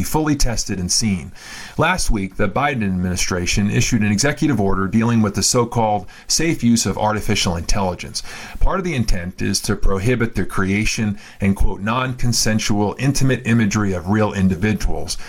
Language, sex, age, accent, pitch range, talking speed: English, male, 40-59, American, 95-120 Hz, 155 wpm